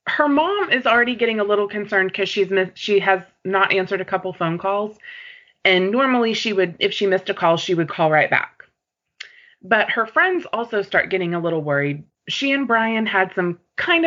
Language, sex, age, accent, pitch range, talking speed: English, female, 20-39, American, 175-225 Hz, 205 wpm